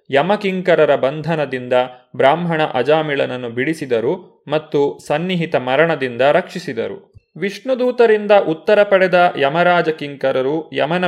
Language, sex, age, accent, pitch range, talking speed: Kannada, male, 30-49, native, 140-185 Hz, 85 wpm